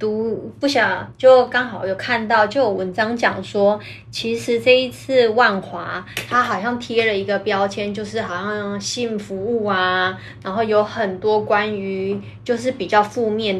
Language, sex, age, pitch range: Chinese, female, 20-39, 190-235 Hz